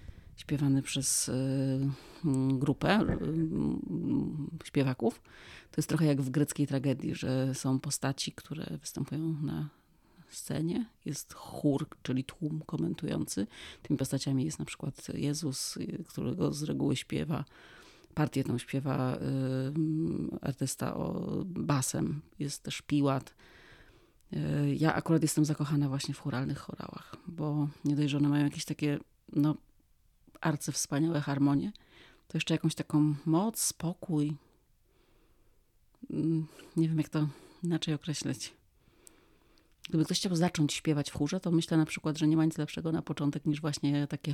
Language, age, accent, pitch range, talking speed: Polish, 30-49, native, 140-160 Hz, 125 wpm